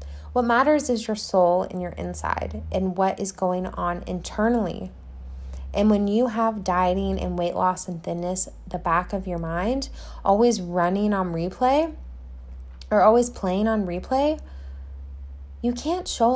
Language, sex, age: English, female, 20-39